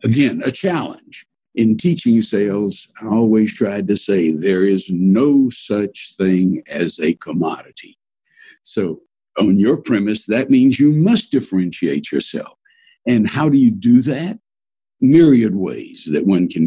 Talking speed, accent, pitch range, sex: 145 wpm, American, 105-175 Hz, male